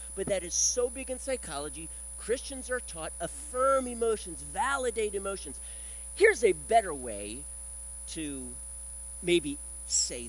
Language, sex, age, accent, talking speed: English, male, 50-69, American, 120 wpm